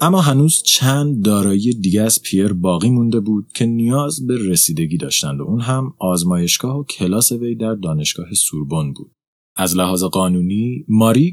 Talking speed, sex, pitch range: 160 wpm, male, 90-130 Hz